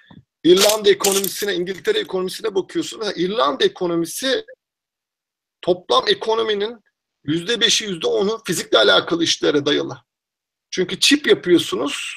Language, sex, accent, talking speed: Turkish, male, native, 90 wpm